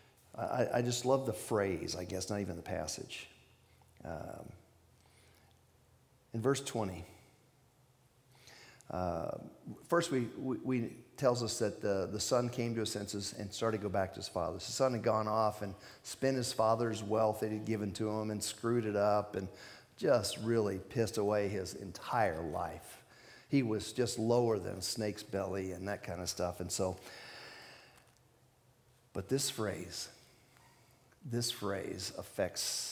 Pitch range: 100-125 Hz